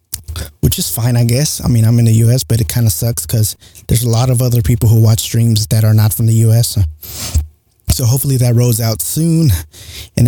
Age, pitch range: 20-39, 110-125 Hz